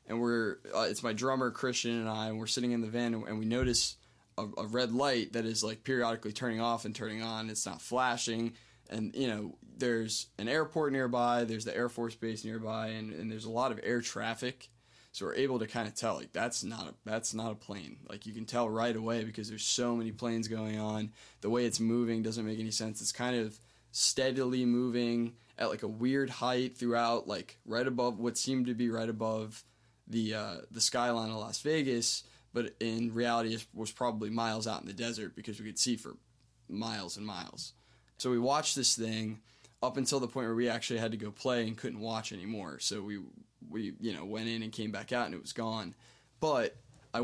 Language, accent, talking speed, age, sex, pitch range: English, American, 220 wpm, 20-39, male, 110-120 Hz